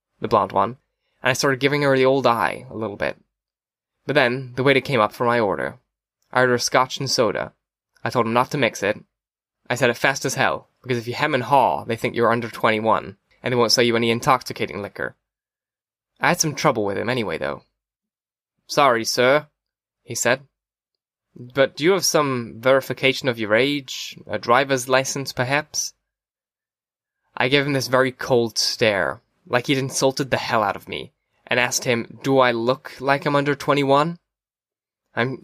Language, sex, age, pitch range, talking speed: English, male, 10-29, 120-145 Hz, 190 wpm